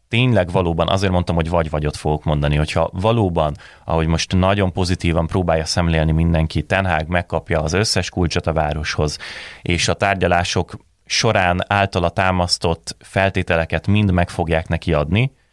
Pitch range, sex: 80-95 Hz, male